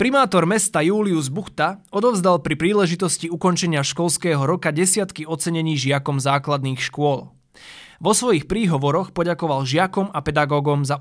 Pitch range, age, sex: 140-180 Hz, 20-39, male